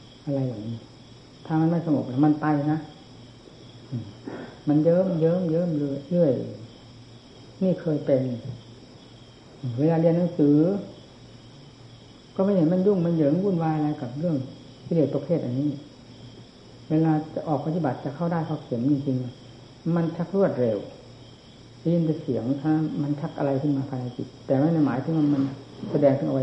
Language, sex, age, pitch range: Thai, female, 60-79, 125-155 Hz